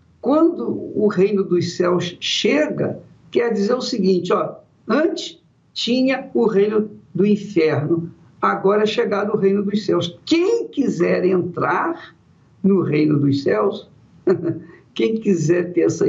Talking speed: 125 wpm